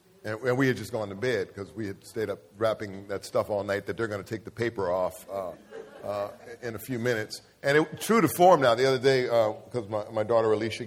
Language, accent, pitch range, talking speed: English, American, 100-135 Hz, 255 wpm